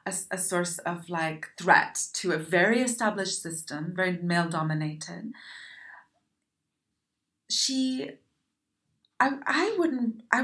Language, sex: English, female